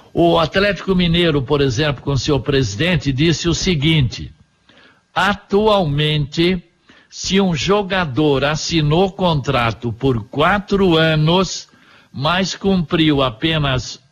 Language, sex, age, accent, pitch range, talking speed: Portuguese, male, 60-79, Brazilian, 145-190 Hz, 100 wpm